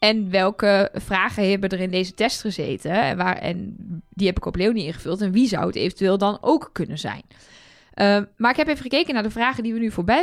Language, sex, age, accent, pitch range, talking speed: Dutch, female, 20-39, Dutch, 185-230 Hz, 235 wpm